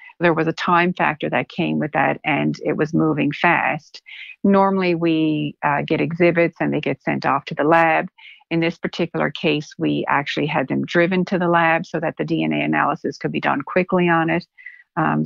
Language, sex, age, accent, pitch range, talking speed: English, female, 50-69, American, 145-175 Hz, 200 wpm